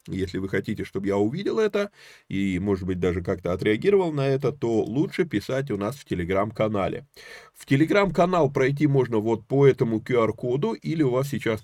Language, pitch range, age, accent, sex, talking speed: Russian, 105-135 Hz, 20-39, native, male, 175 wpm